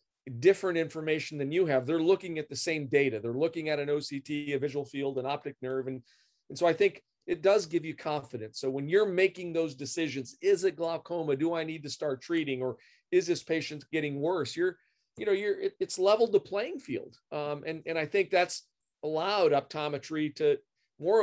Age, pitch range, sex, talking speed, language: 40-59, 140-185 Hz, male, 205 wpm, English